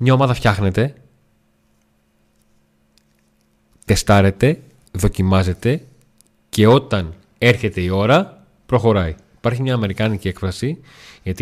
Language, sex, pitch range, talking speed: Greek, male, 95-120 Hz, 85 wpm